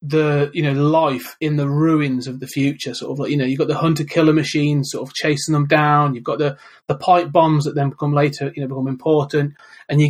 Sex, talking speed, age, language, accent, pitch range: male, 250 wpm, 30-49, English, British, 145-175 Hz